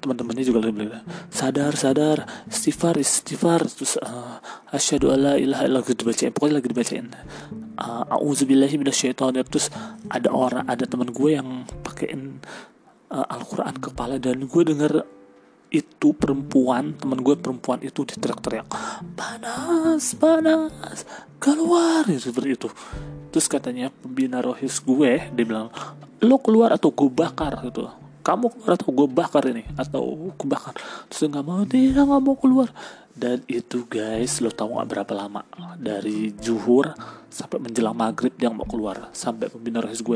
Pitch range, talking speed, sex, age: 120-185 Hz, 145 wpm, male, 30-49